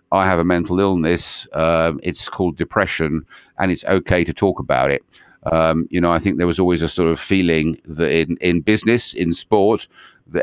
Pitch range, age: 80-95 Hz, 50-69